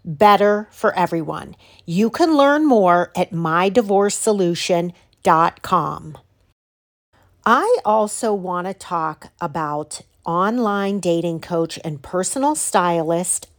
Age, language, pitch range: 40-59, English, 175-245 Hz